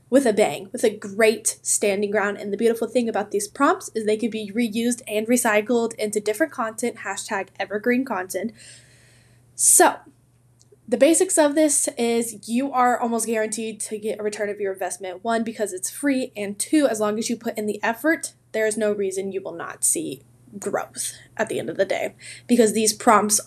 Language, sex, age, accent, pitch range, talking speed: English, female, 10-29, American, 200-245 Hz, 195 wpm